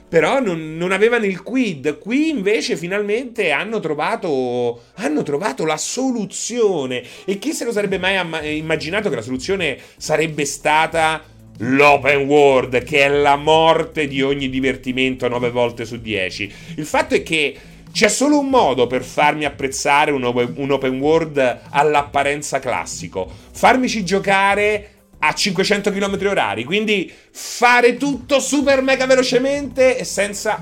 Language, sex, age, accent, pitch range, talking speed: Italian, male, 30-49, native, 135-205 Hz, 140 wpm